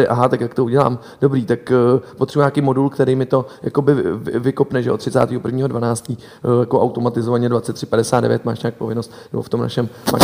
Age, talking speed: 40-59, 190 wpm